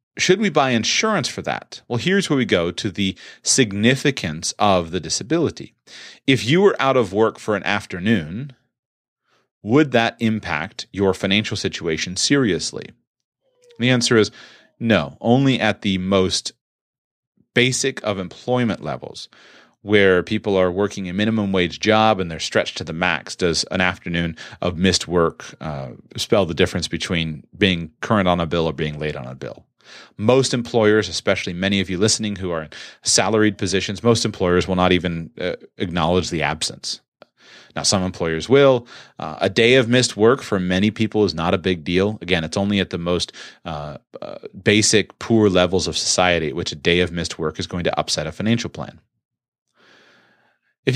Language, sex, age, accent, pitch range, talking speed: English, male, 30-49, American, 90-120 Hz, 175 wpm